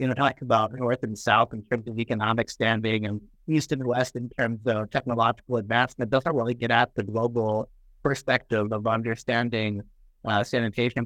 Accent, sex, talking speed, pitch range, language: American, male, 175 wpm, 100-120 Hz, English